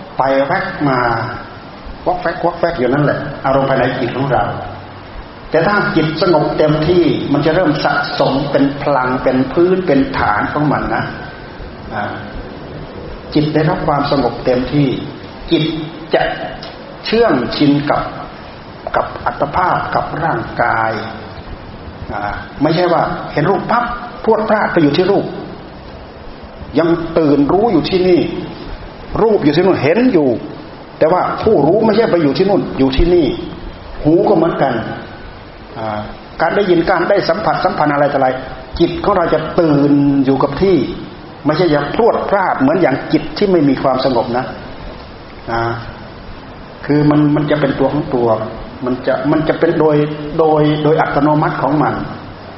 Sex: male